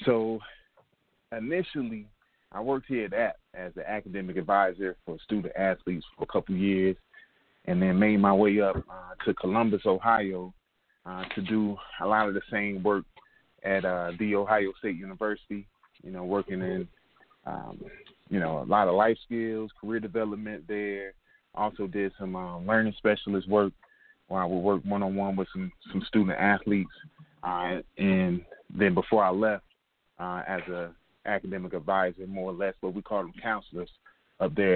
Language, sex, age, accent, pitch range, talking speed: English, male, 30-49, American, 95-105 Hz, 165 wpm